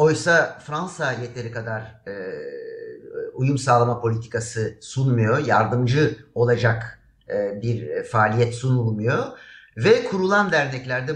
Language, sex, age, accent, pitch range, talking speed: Turkish, male, 60-79, native, 110-155 Hz, 95 wpm